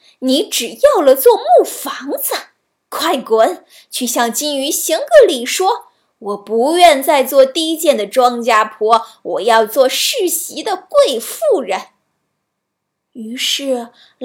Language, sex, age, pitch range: Chinese, female, 20-39, 230-300 Hz